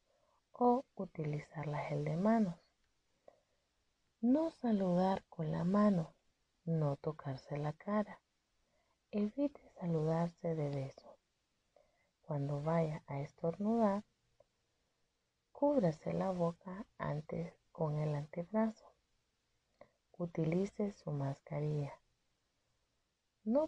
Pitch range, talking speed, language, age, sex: 150-215 Hz, 85 wpm, Spanish, 30-49, female